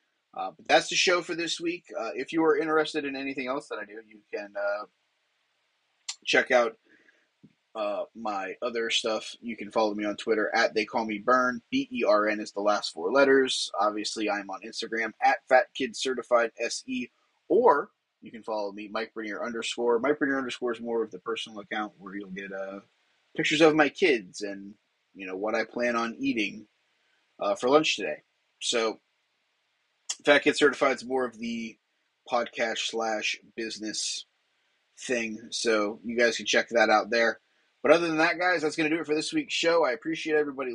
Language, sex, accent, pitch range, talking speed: English, male, American, 110-155 Hz, 195 wpm